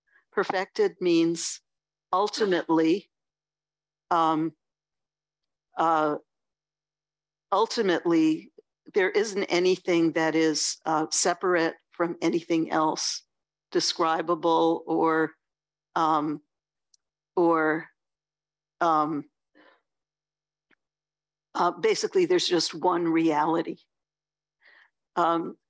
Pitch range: 160-185 Hz